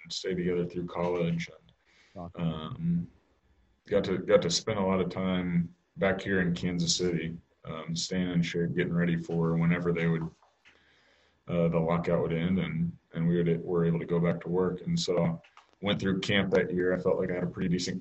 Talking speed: 205 wpm